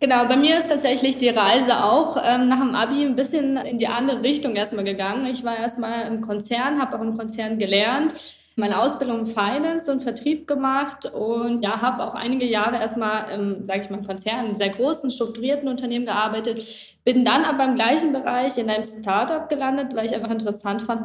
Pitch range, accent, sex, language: 210-260 Hz, German, female, German